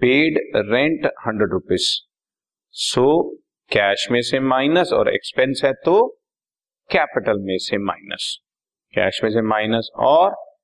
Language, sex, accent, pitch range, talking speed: Hindi, male, native, 105-150 Hz, 125 wpm